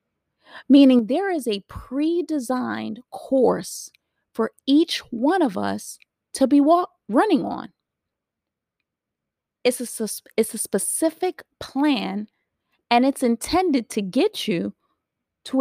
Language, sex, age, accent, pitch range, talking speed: English, female, 30-49, American, 200-285 Hz, 110 wpm